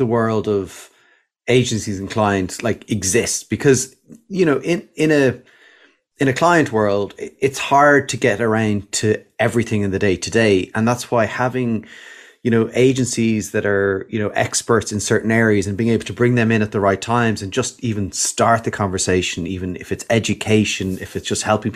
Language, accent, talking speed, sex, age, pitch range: English, Irish, 195 wpm, male, 30-49, 100-120 Hz